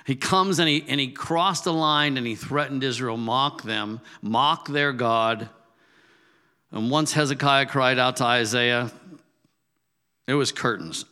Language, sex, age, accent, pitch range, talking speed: English, male, 50-69, American, 115-150 Hz, 150 wpm